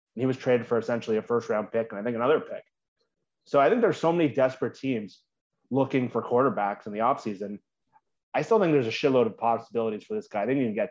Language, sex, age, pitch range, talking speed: English, male, 30-49, 115-140 Hz, 250 wpm